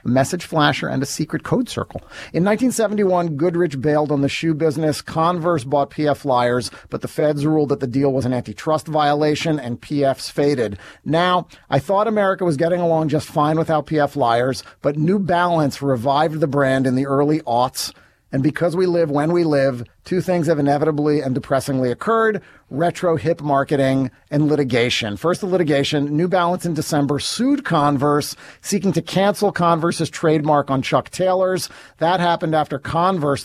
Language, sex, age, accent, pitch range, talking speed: English, male, 40-59, American, 140-170 Hz, 170 wpm